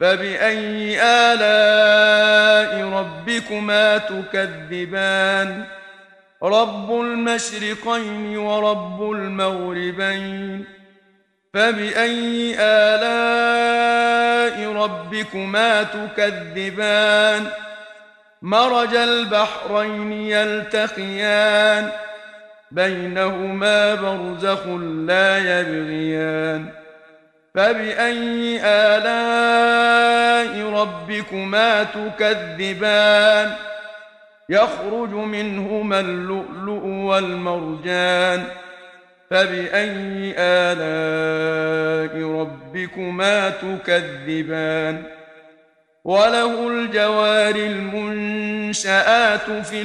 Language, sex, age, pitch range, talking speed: Arabic, male, 50-69, 190-215 Hz, 40 wpm